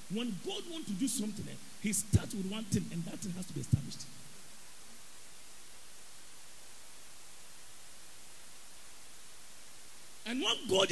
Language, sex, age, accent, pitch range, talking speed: English, male, 50-69, Nigerian, 195-245 Hz, 115 wpm